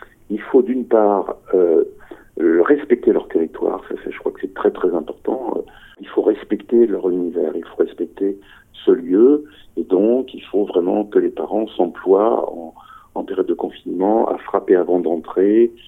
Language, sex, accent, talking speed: French, male, French, 170 wpm